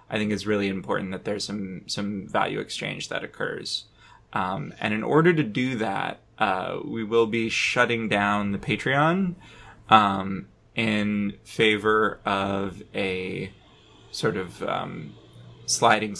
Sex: male